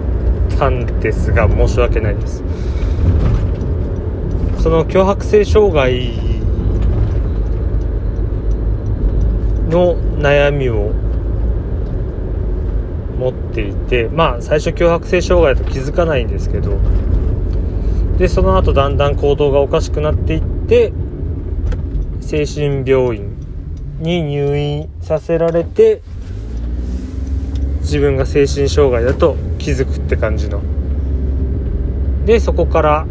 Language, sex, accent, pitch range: Japanese, male, native, 80-105 Hz